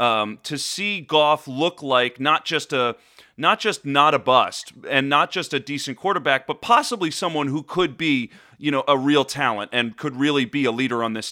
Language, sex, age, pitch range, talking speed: English, male, 30-49, 130-170 Hz, 205 wpm